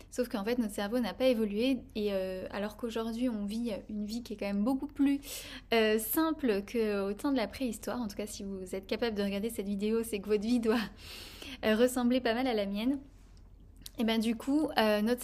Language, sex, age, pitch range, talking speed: French, female, 10-29, 215-260 Hz, 230 wpm